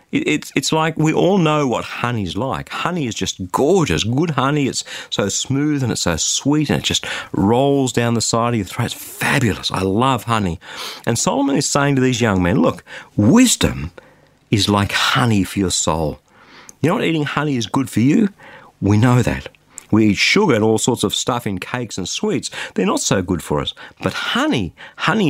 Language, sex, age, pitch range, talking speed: English, male, 50-69, 100-145 Hz, 205 wpm